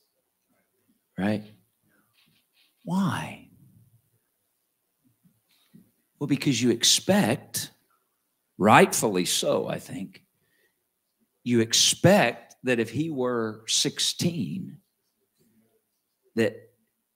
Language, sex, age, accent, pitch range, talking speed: English, male, 50-69, American, 115-175 Hz, 65 wpm